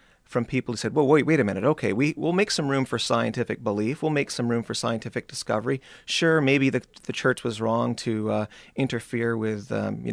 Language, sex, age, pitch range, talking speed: English, male, 30-49, 105-135 Hz, 225 wpm